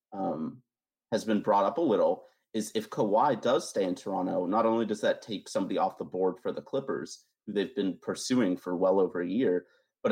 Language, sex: English, male